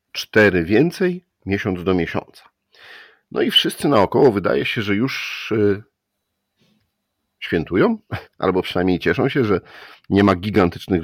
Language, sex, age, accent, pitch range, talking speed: Polish, male, 50-69, native, 85-105 Hz, 120 wpm